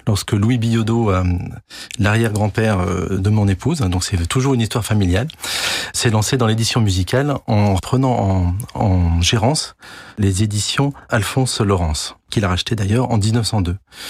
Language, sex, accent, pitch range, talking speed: French, male, French, 100-120 Hz, 140 wpm